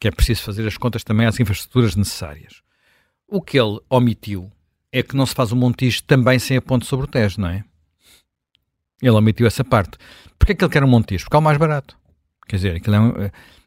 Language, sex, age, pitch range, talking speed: Portuguese, male, 50-69, 105-130 Hz, 225 wpm